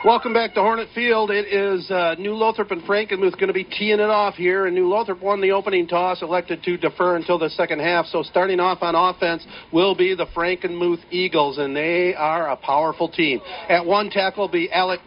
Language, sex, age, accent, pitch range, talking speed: English, male, 50-69, American, 175-200 Hz, 220 wpm